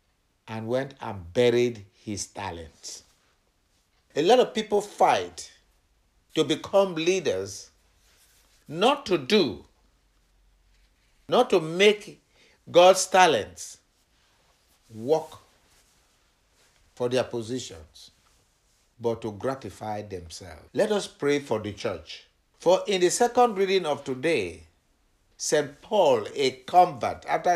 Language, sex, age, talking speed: English, male, 60-79, 105 wpm